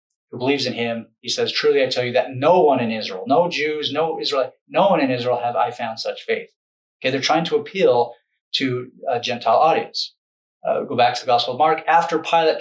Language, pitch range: English, 125-175 Hz